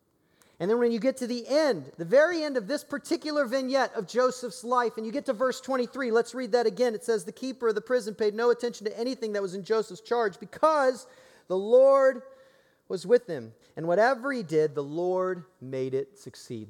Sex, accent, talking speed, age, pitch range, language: male, American, 215 wpm, 40-59, 165-235 Hz, English